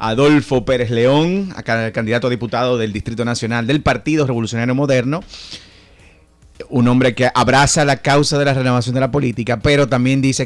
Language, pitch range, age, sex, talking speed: Spanish, 95-125 Hz, 30-49, male, 160 wpm